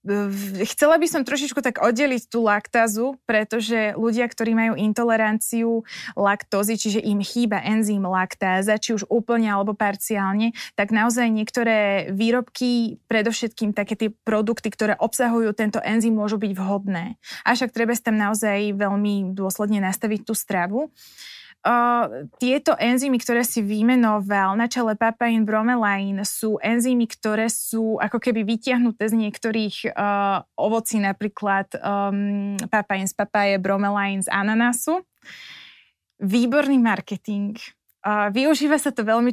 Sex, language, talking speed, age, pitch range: female, Slovak, 130 wpm, 20-39, 205-240 Hz